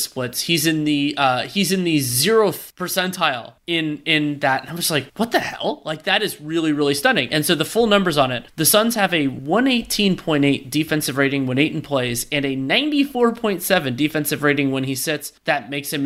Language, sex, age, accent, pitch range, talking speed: English, male, 20-39, American, 140-175 Hz, 200 wpm